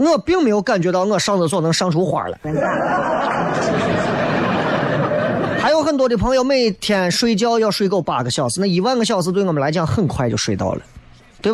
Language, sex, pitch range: Chinese, male, 155-220 Hz